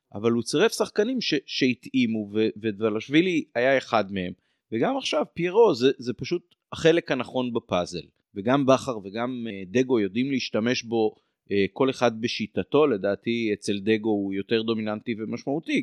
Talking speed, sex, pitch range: 135 wpm, male, 115-155 Hz